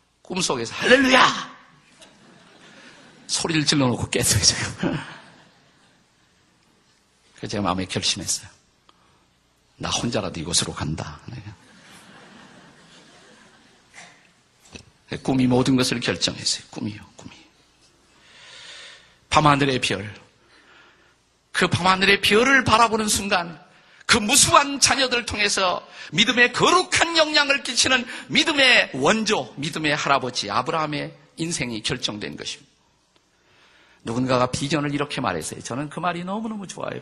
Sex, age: male, 50-69